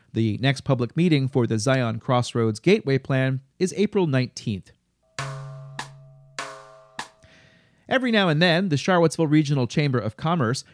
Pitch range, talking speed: 125-170 Hz, 130 wpm